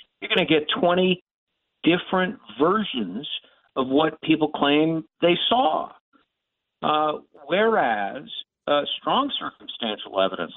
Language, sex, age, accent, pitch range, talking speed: English, male, 50-69, American, 120-170 Hz, 110 wpm